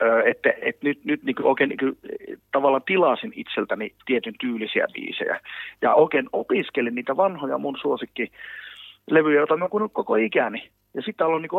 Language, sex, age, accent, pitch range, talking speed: Finnish, male, 30-49, native, 120-160 Hz, 150 wpm